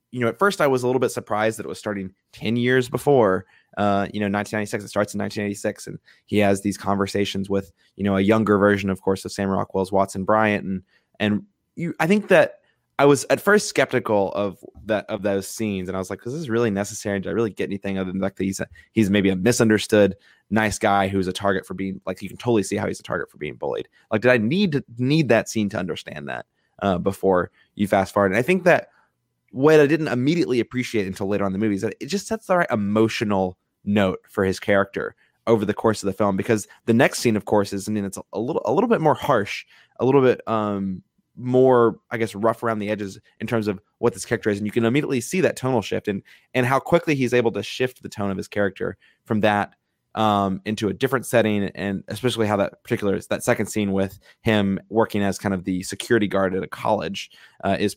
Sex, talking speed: male, 245 wpm